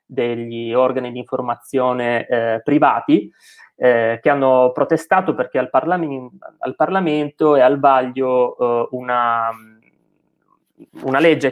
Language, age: Italian, 20-39